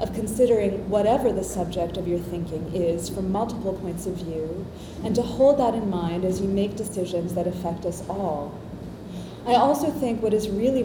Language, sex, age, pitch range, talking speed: English, female, 30-49, 190-235 Hz, 190 wpm